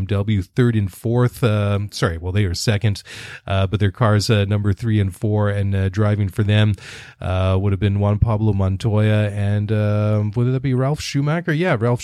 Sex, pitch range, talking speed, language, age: male, 95-115 Hz, 205 wpm, English, 30-49